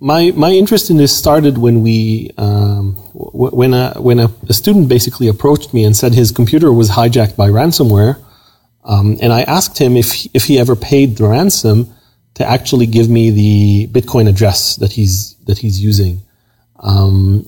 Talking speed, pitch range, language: 180 wpm, 105-140 Hz, English